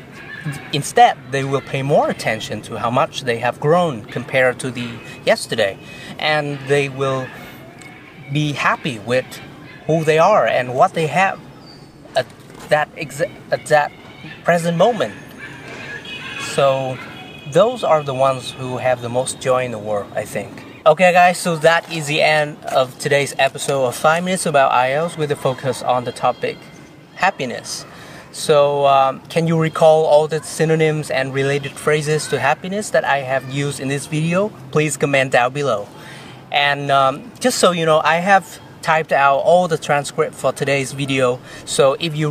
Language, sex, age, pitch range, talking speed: Vietnamese, male, 30-49, 135-160 Hz, 165 wpm